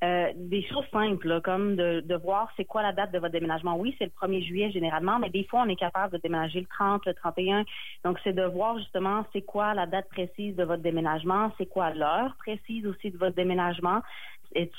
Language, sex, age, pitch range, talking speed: French, female, 30-49, 165-190 Hz, 225 wpm